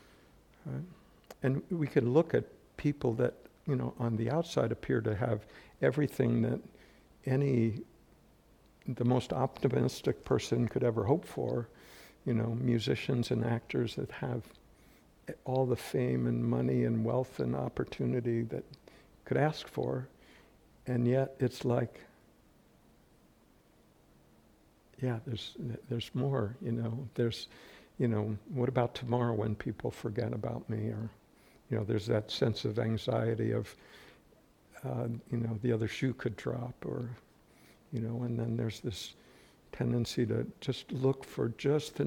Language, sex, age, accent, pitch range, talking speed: English, male, 60-79, American, 110-125 Hz, 140 wpm